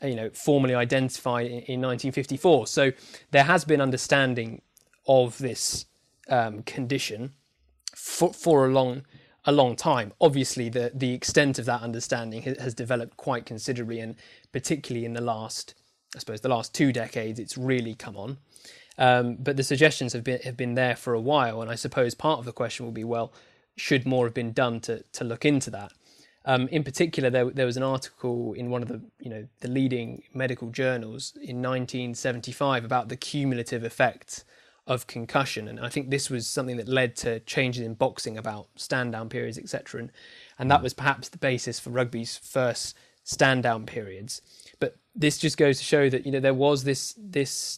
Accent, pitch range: British, 120-135 Hz